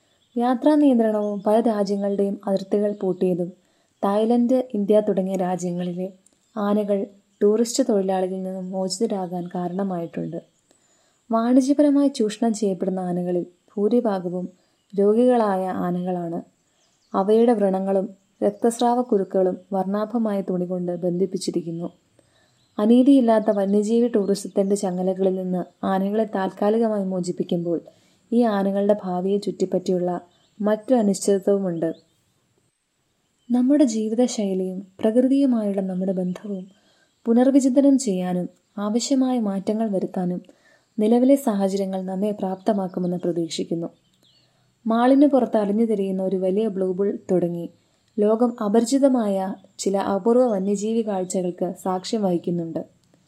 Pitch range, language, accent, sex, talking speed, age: 185-225 Hz, Malayalam, native, female, 80 wpm, 20-39